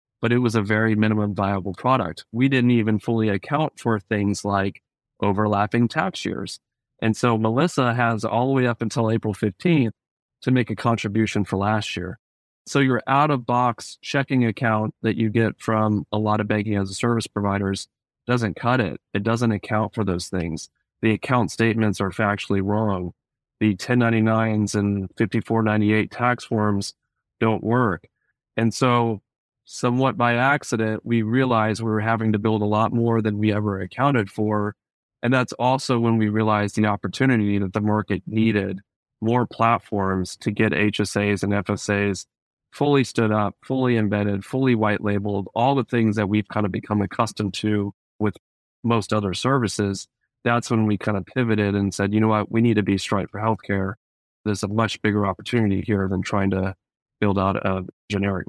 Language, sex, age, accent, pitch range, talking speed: English, male, 30-49, American, 100-115 Hz, 175 wpm